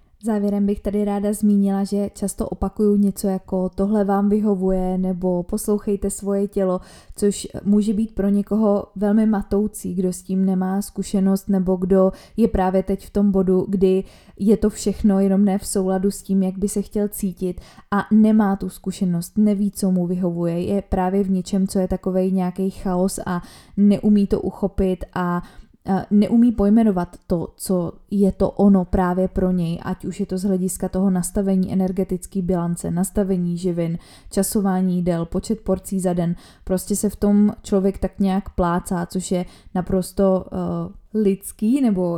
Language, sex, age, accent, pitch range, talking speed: Czech, female, 20-39, native, 185-200 Hz, 165 wpm